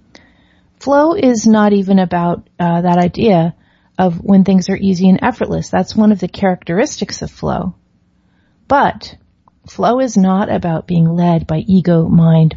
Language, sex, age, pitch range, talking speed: English, female, 30-49, 165-195 Hz, 155 wpm